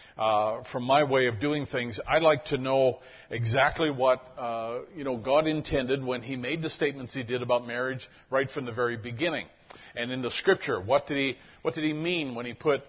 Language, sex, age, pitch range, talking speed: English, male, 50-69, 120-145 Hz, 215 wpm